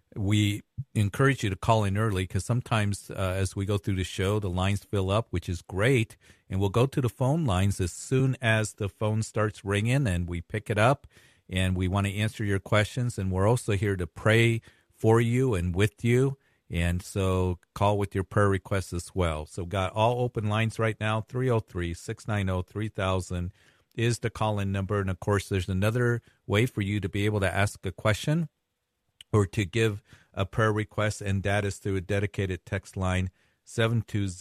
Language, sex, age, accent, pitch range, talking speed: English, male, 50-69, American, 95-110 Hz, 195 wpm